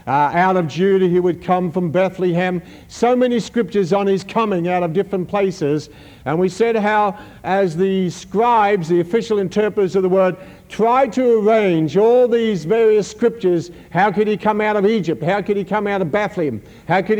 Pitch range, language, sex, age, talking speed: 175-215 Hz, English, male, 60-79, 190 wpm